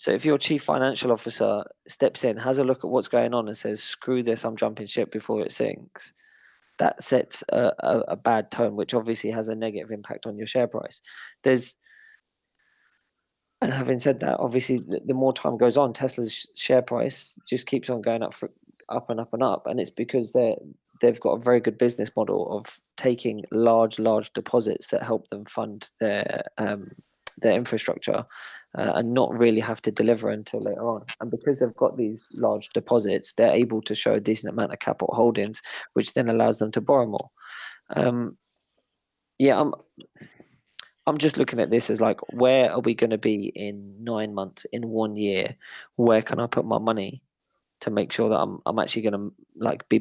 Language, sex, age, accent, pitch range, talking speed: English, male, 20-39, British, 110-125 Hz, 200 wpm